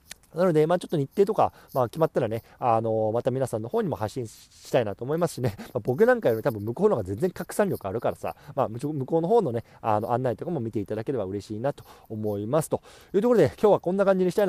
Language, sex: Japanese, male